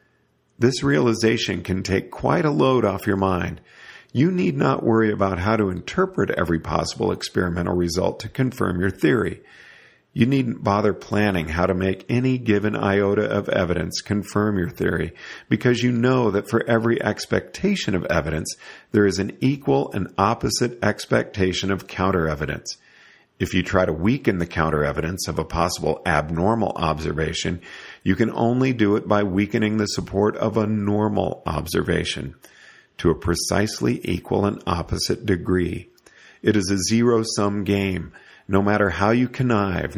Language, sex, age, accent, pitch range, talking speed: English, male, 50-69, American, 90-115 Hz, 155 wpm